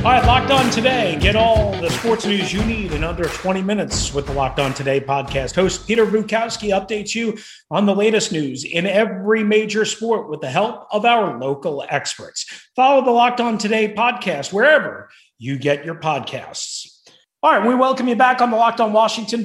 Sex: male